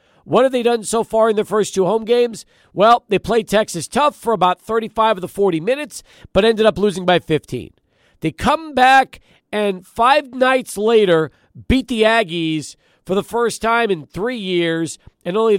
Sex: male